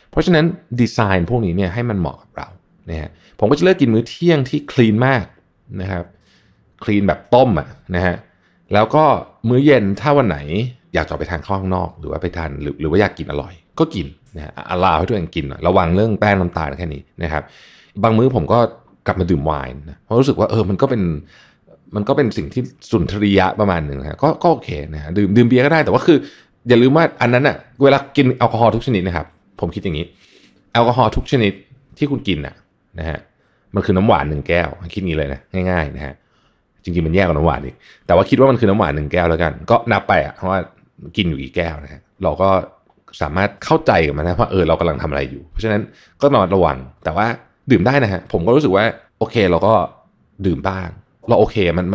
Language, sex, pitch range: Thai, male, 80-120 Hz